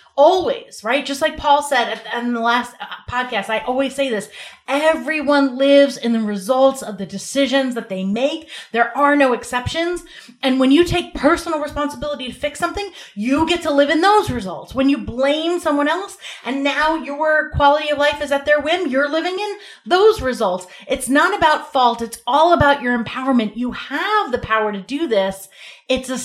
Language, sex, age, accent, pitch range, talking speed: English, female, 30-49, American, 230-295 Hz, 190 wpm